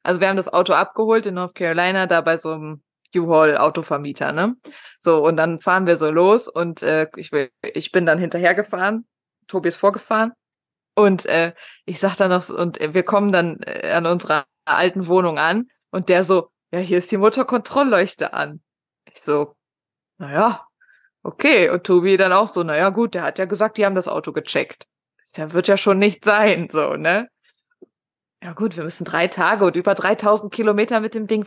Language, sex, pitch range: German, female, 170-220 Hz